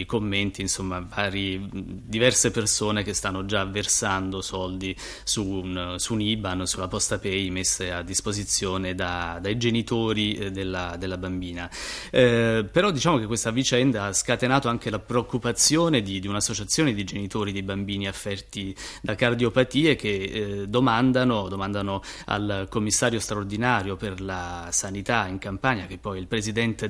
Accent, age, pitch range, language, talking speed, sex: native, 30-49, 95-120 Hz, Italian, 145 wpm, male